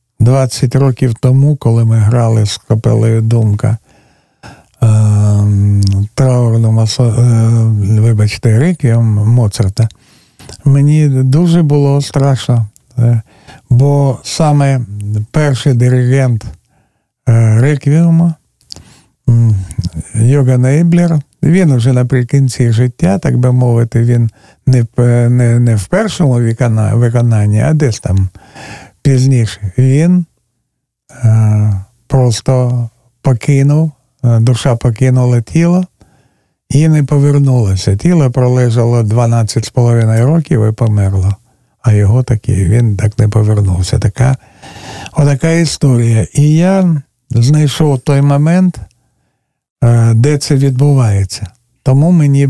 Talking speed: 85 wpm